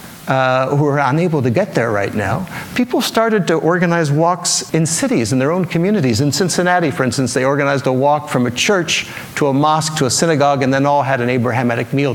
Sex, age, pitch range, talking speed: male, 50-69, 125-160 Hz, 215 wpm